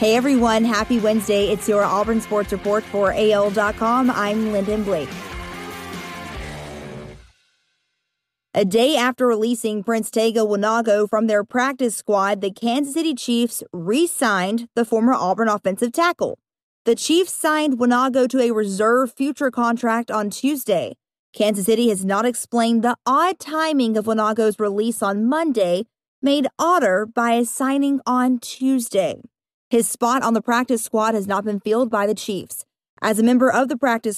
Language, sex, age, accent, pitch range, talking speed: English, female, 30-49, American, 210-255 Hz, 150 wpm